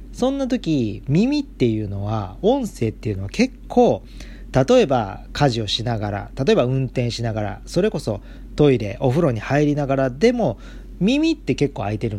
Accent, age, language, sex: native, 40-59, Japanese, male